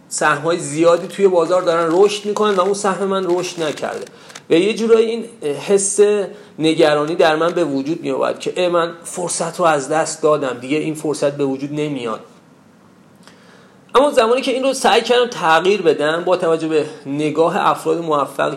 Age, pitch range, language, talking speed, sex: 40-59, 155-205 Hz, Persian, 170 wpm, male